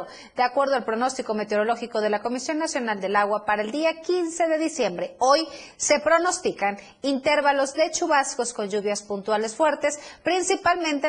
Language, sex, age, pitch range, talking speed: Spanish, female, 30-49, 230-315 Hz, 150 wpm